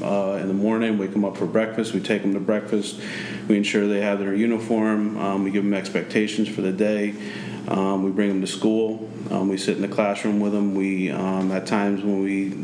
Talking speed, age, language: 230 wpm, 30-49, English